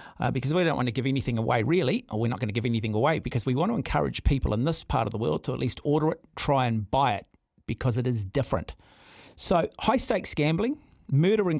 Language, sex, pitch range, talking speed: English, male, 120-155 Hz, 250 wpm